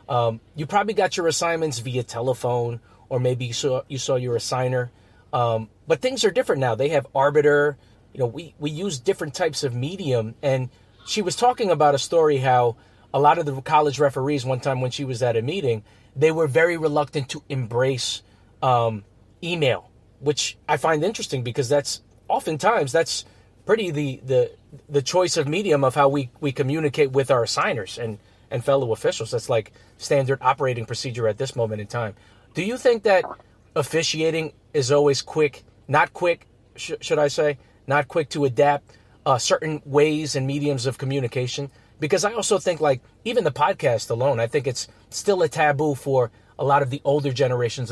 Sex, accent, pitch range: male, American, 115-150 Hz